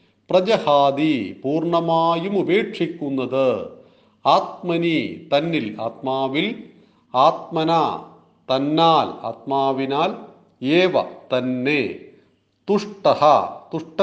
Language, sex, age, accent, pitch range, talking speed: Malayalam, male, 40-59, native, 130-175 Hz, 45 wpm